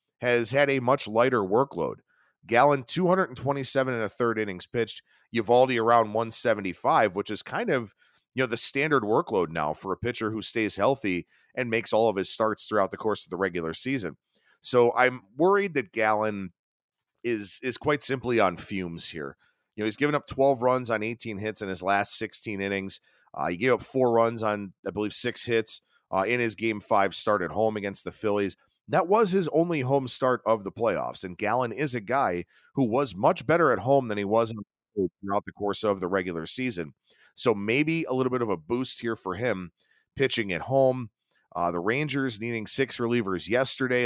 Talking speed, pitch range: 205 wpm, 100-130 Hz